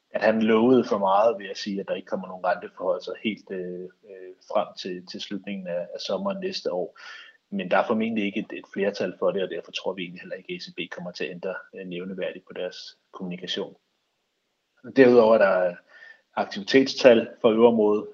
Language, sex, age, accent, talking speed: Danish, male, 30-49, native, 205 wpm